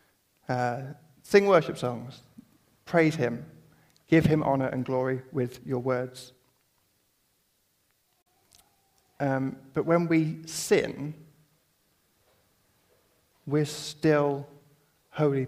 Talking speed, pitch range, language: 85 wpm, 130-150 Hz, English